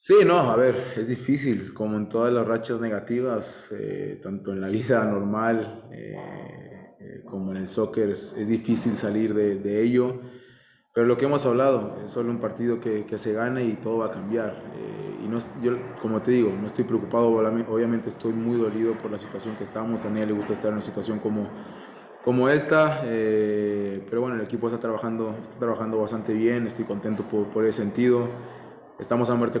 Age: 20-39